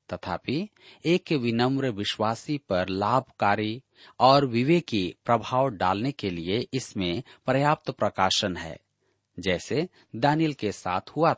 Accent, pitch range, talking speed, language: native, 105-145 Hz, 105 wpm, Hindi